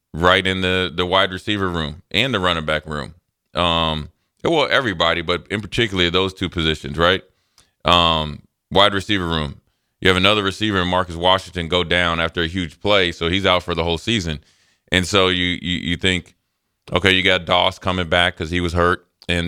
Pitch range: 85-95 Hz